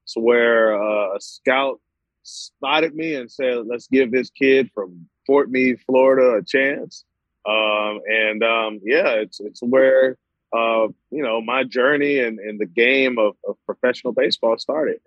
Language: English